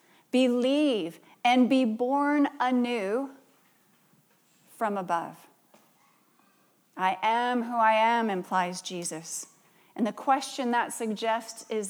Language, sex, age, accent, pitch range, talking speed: English, female, 30-49, American, 195-250 Hz, 100 wpm